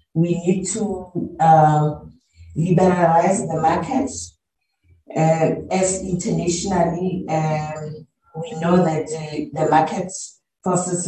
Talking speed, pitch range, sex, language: 95 wpm, 160-190 Hz, female, English